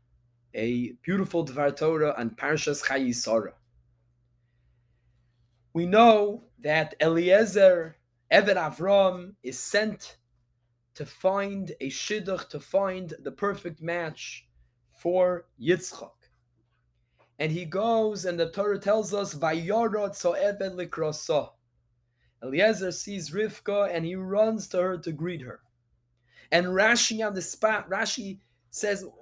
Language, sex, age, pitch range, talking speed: English, male, 20-39, 130-205 Hz, 110 wpm